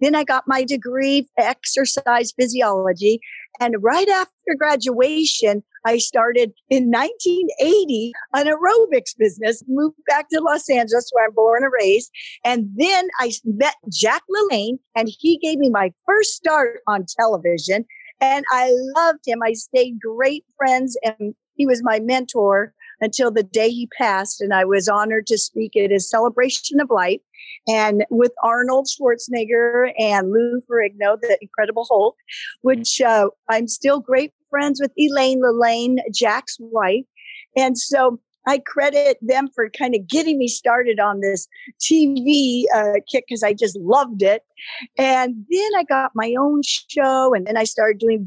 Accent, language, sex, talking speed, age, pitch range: American, English, female, 160 wpm, 50-69, 225-280 Hz